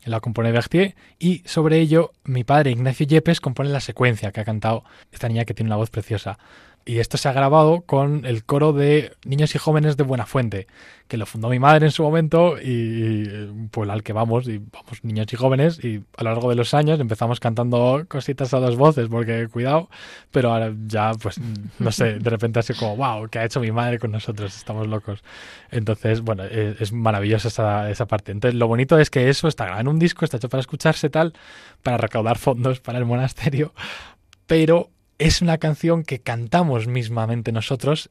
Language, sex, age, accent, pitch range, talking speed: Spanish, male, 20-39, Spanish, 110-140 Hz, 200 wpm